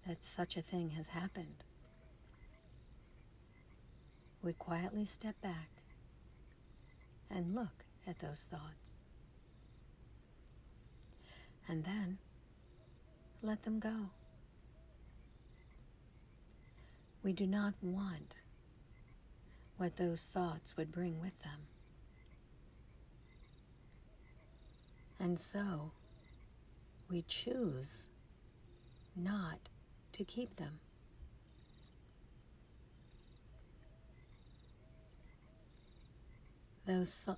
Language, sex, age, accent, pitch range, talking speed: English, female, 50-69, American, 120-185 Hz, 65 wpm